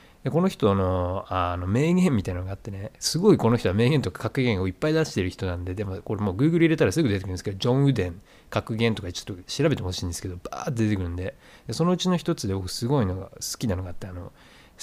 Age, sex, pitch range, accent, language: 20-39, male, 100-155 Hz, native, Japanese